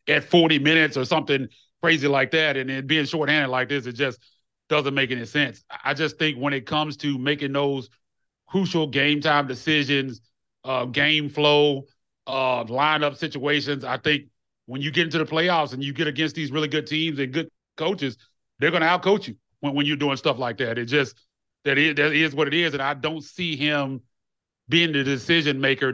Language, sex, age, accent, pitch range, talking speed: English, male, 30-49, American, 130-155 Hz, 200 wpm